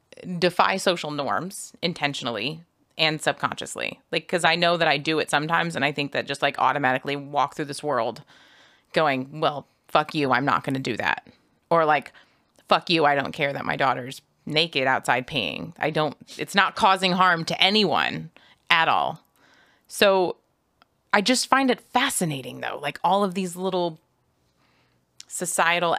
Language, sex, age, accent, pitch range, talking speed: English, female, 30-49, American, 145-190 Hz, 165 wpm